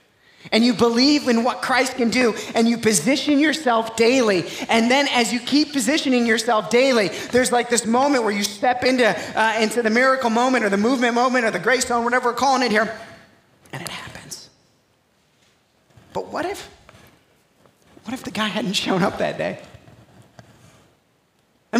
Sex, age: male, 30-49